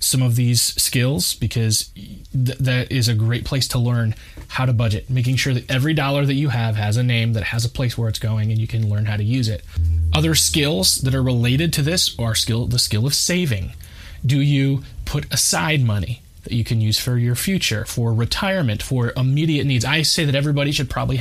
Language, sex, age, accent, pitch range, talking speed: English, male, 20-39, American, 110-130 Hz, 220 wpm